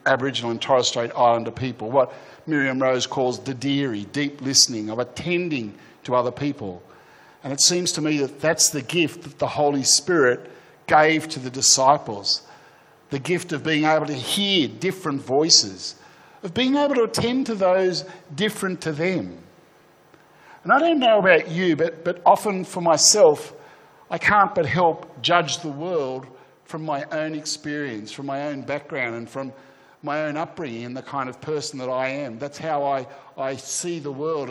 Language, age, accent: English, 50-69, Australian